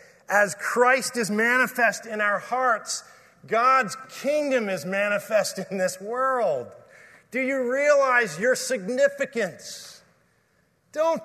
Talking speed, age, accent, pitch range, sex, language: 105 wpm, 40-59, American, 195-265 Hz, male, English